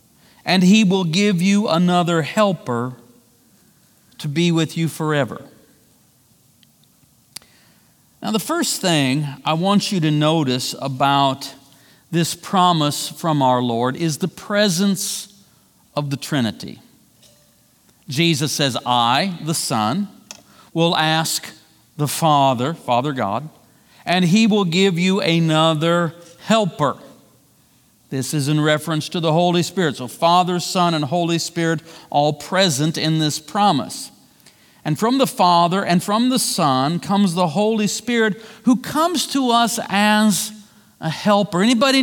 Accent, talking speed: American, 130 wpm